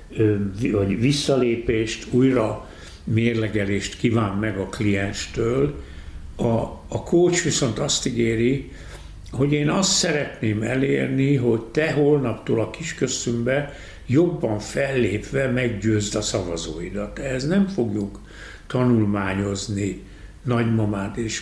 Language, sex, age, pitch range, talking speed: Hungarian, male, 60-79, 100-130 Hz, 95 wpm